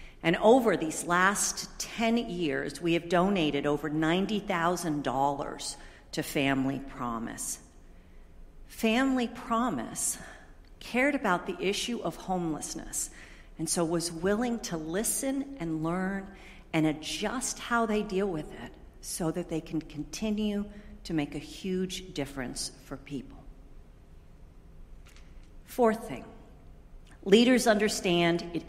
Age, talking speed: 50-69, 115 wpm